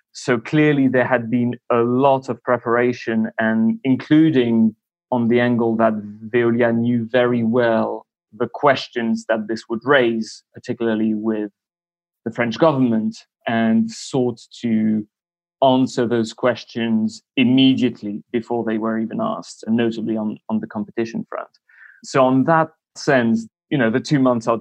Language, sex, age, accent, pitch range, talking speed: English, male, 30-49, British, 115-135 Hz, 145 wpm